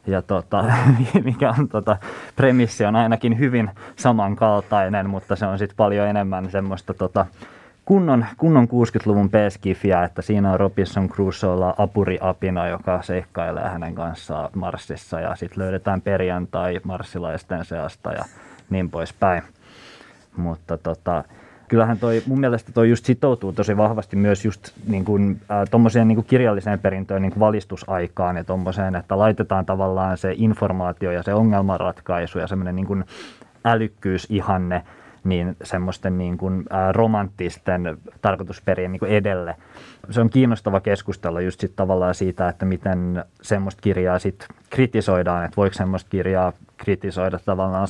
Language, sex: Finnish, male